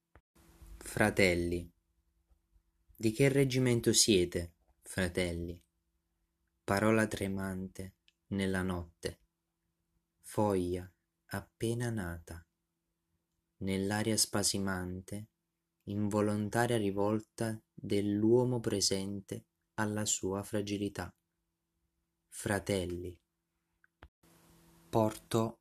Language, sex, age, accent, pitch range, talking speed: Italian, male, 20-39, native, 85-105 Hz, 55 wpm